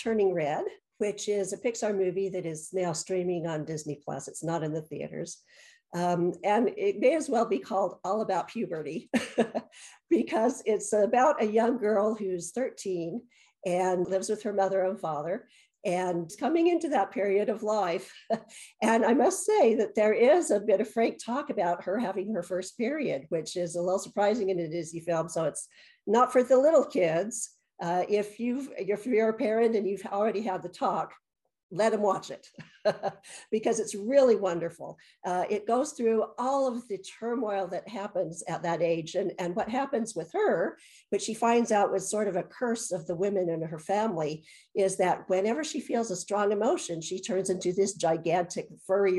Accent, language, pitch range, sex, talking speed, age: American, English, 180-230 Hz, female, 185 wpm, 50-69